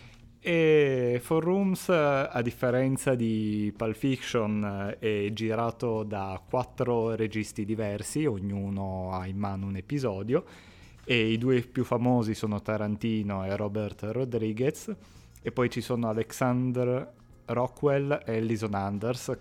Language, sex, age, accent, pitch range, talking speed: Italian, male, 30-49, native, 100-120 Hz, 120 wpm